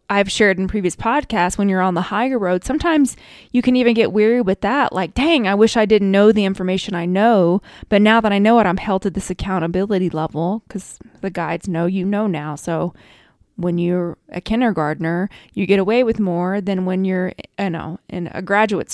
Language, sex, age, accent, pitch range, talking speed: English, female, 20-39, American, 175-215 Hz, 210 wpm